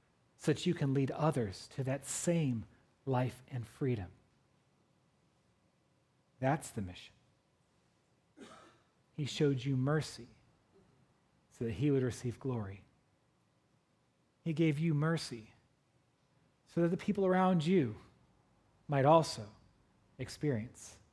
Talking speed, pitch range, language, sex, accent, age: 105 wpm, 110-135 Hz, English, male, American, 40-59